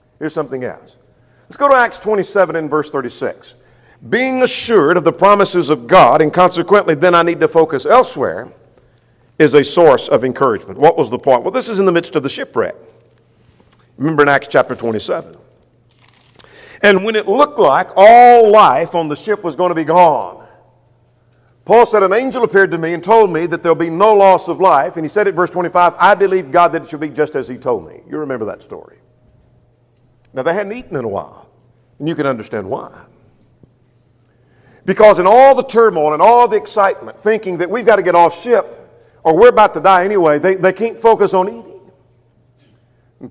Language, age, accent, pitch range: English, 50-69, American, 125-205 Hz